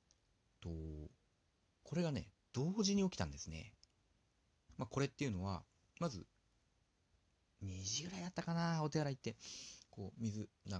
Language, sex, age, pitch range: Japanese, male, 40-59, 90-115 Hz